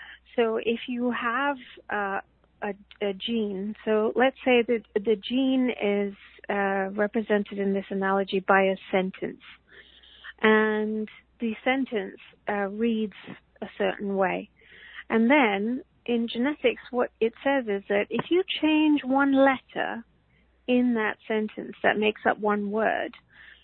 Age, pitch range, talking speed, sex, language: 40-59, 205-245 Hz, 135 wpm, female, English